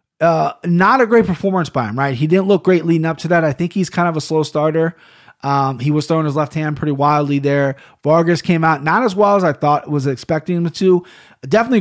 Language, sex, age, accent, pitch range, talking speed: English, male, 30-49, American, 140-170 Hz, 245 wpm